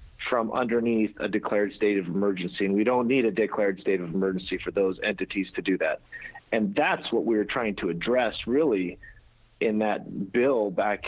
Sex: male